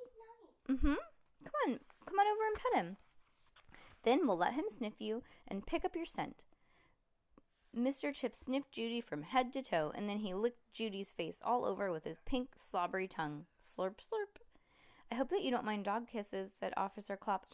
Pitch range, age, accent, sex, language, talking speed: 190-255 Hz, 20-39, American, female, English, 190 wpm